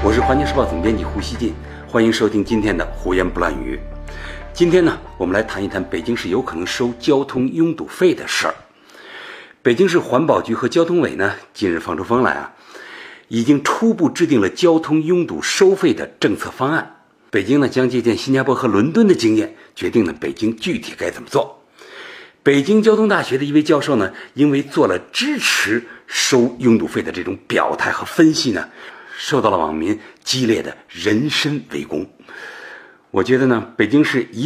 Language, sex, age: Chinese, male, 60-79